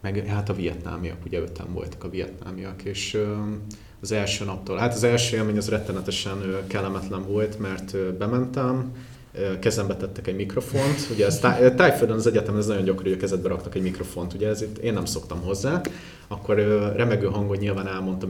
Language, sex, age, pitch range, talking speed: Hungarian, male, 30-49, 100-125 Hz, 190 wpm